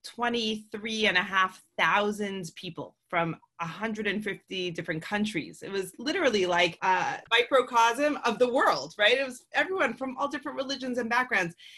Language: English